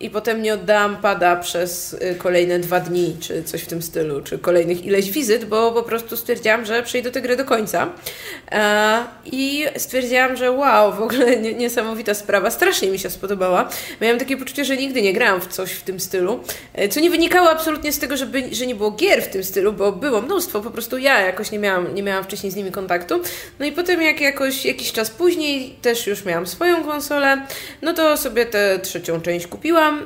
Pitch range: 195-285 Hz